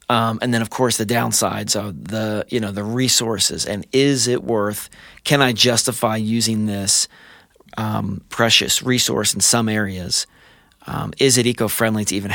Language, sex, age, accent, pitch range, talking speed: English, male, 30-49, American, 110-130 Hz, 165 wpm